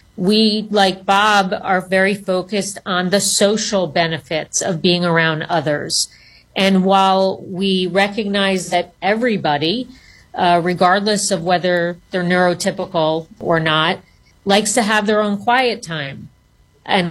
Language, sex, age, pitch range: English, female, 40-59, 175-205 Hz